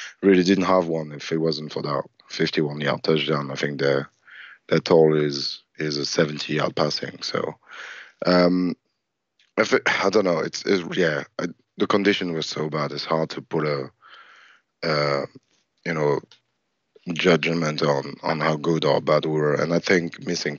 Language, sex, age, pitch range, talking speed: English, male, 30-49, 75-85 Hz, 180 wpm